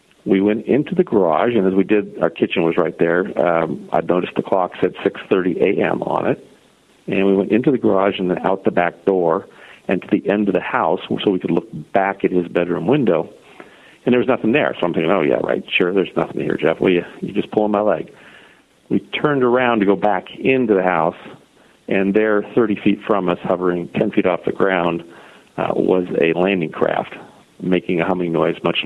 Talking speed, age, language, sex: 215 wpm, 50-69, English, male